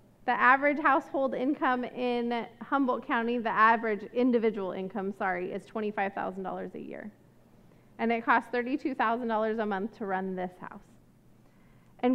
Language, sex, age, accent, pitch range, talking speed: English, female, 30-49, American, 220-290 Hz, 135 wpm